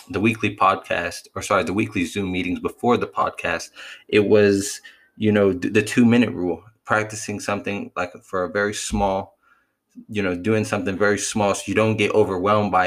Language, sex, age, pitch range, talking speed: English, male, 20-39, 95-110 Hz, 180 wpm